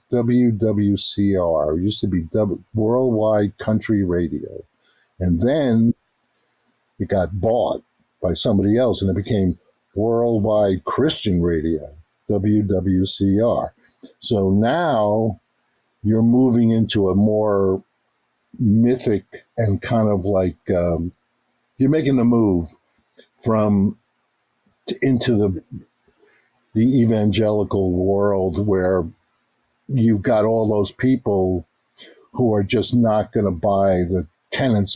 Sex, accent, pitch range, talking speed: male, American, 95-115 Hz, 105 wpm